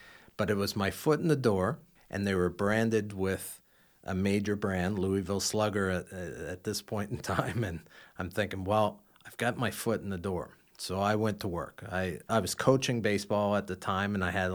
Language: English